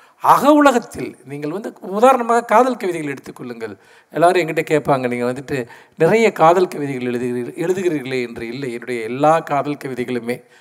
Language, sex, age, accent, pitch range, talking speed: Tamil, male, 50-69, native, 130-200 Hz, 135 wpm